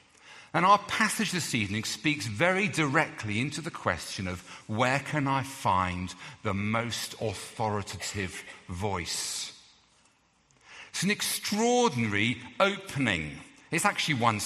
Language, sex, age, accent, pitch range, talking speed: English, male, 50-69, British, 110-160 Hz, 110 wpm